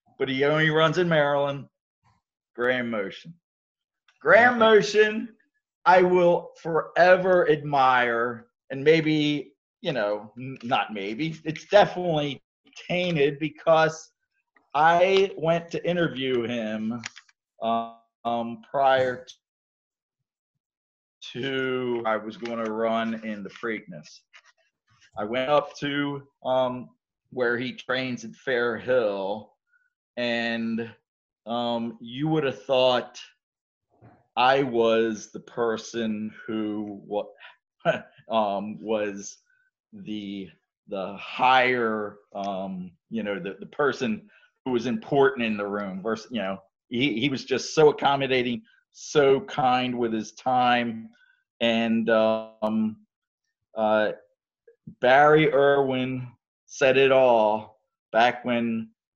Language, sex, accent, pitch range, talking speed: English, male, American, 115-155 Hz, 105 wpm